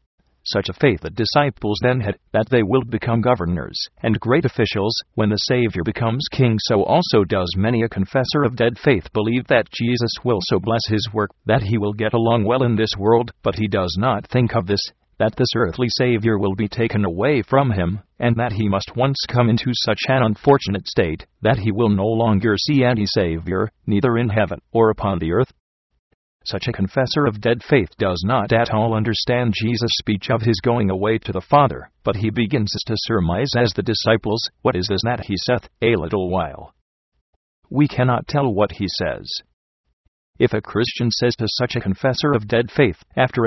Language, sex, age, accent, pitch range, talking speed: English, male, 40-59, American, 100-120 Hz, 200 wpm